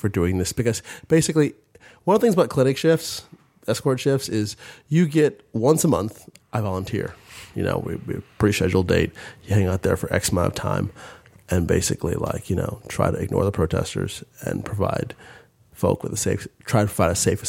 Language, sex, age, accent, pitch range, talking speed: English, male, 30-49, American, 100-135 Hz, 200 wpm